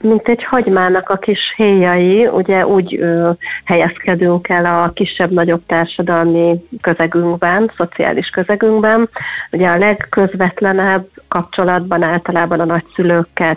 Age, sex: 30-49, female